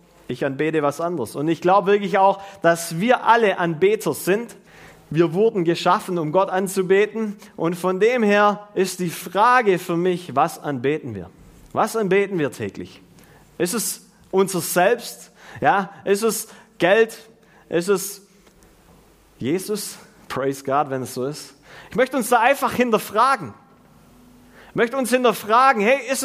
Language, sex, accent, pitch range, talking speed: German, male, German, 185-255 Hz, 150 wpm